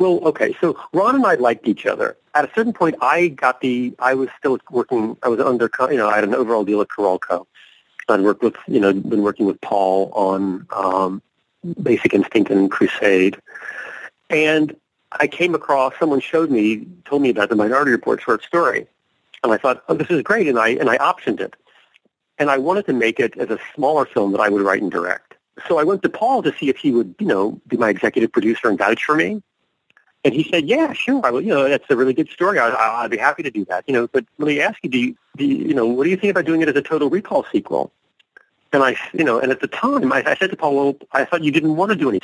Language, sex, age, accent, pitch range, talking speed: English, male, 40-59, American, 125-180 Hz, 250 wpm